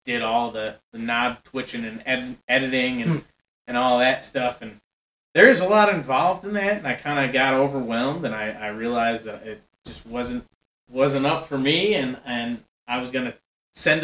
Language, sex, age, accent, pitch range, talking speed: English, male, 30-49, American, 115-135 Hz, 200 wpm